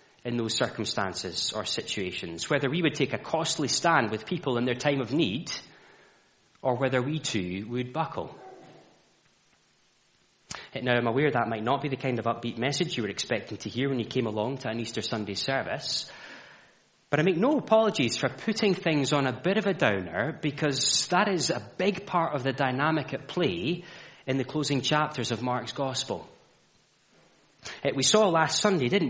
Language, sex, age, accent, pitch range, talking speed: English, male, 30-49, British, 120-160 Hz, 185 wpm